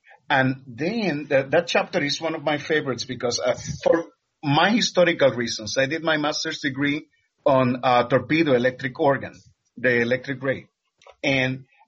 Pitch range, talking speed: 130-160 Hz, 150 wpm